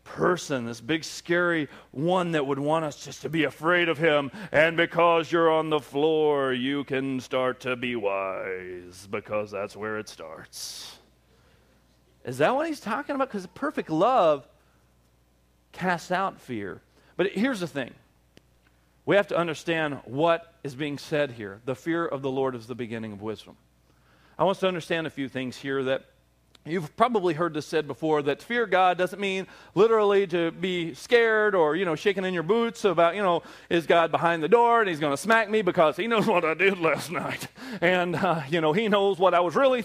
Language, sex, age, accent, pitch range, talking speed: English, male, 40-59, American, 130-195 Hz, 200 wpm